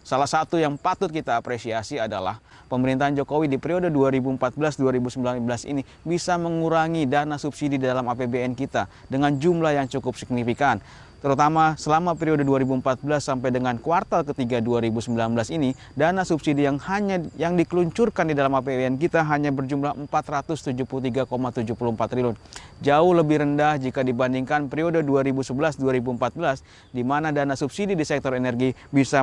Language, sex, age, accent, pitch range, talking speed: Indonesian, male, 30-49, native, 130-155 Hz, 130 wpm